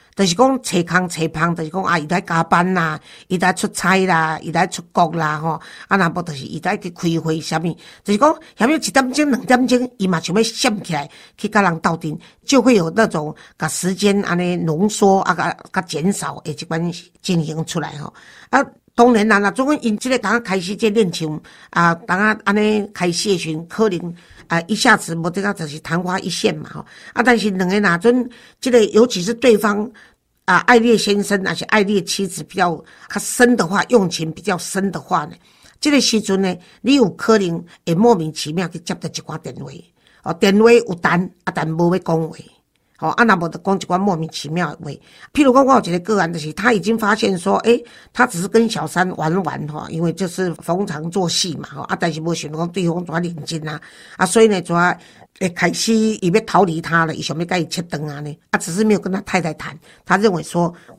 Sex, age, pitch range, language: female, 50-69, 165-215 Hz, Chinese